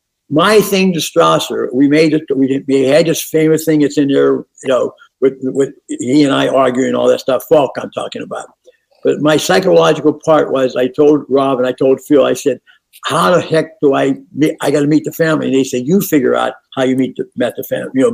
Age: 60-79